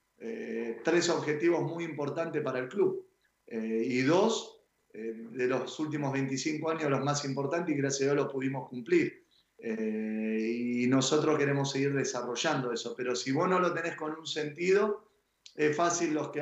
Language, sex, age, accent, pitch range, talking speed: Spanish, male, 30-49, Argentinian, 125-155 Hz, 170 wpm